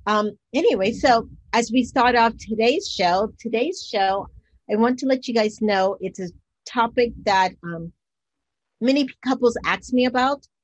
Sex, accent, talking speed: female, American, 150 wpm